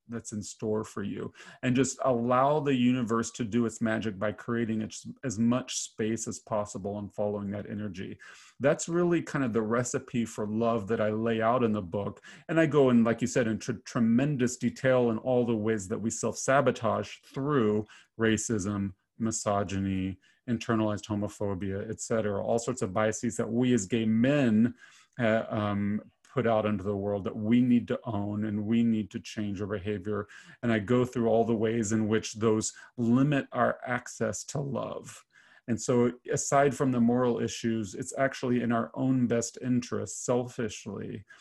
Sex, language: male, English